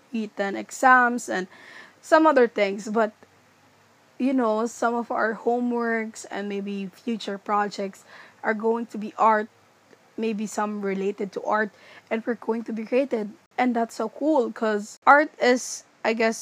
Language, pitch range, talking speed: Filipino, 200-245 Hz, 155 wpm